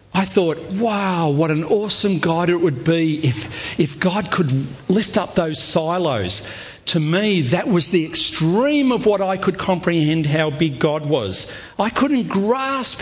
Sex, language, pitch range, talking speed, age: male, English, 120-180 Hz, 165 wpm, 50-69